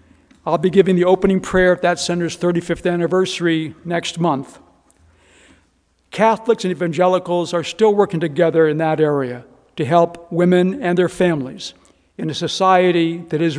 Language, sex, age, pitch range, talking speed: English, male, 60-79, 170-200 Hz, 150 wpm